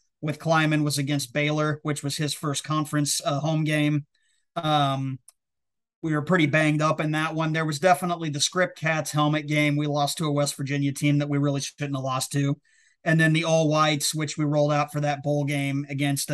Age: 30-49